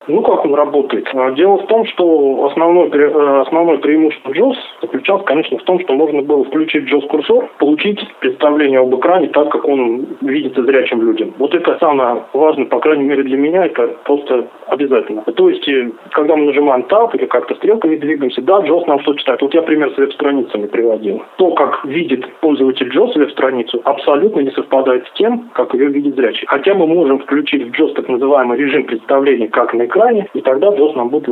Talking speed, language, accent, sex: 190 wpm, Russian, native, male